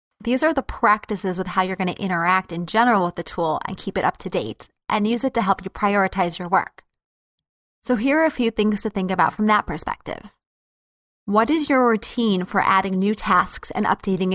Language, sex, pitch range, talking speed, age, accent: English, female, 185-230 Hz, 215 wpm, 20-39, American